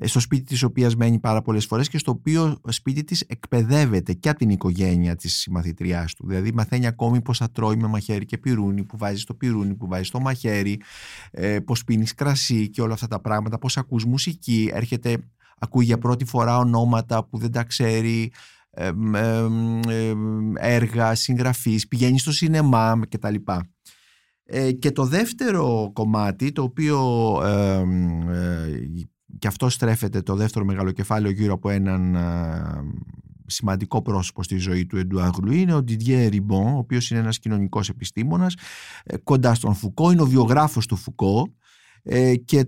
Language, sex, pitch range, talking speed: Greek, male, 100-130 Hz, 150 wpm